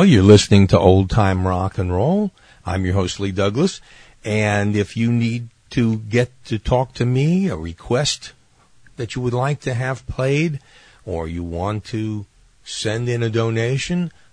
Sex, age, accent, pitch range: male, 50-69, American, 100-125 Hz